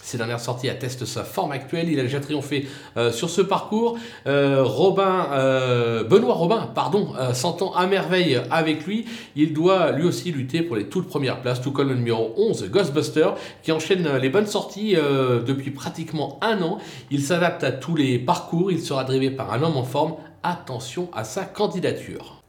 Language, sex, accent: French, male, French